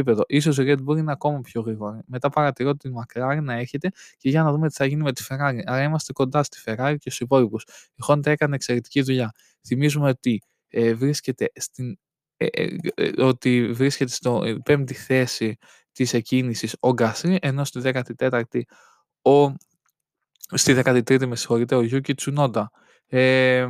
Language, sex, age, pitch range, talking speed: Greek, male, 20-39, 125-145 Hz, 165 wpm